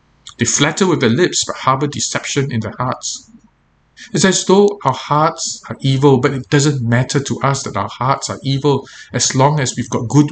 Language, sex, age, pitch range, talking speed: English, male, 50-69, 115-150 Hz, 205 wpm